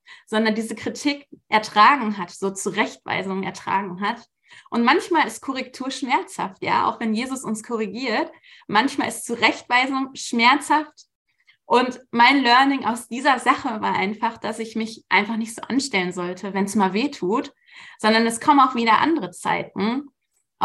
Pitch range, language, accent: 210-255 Hz, German, German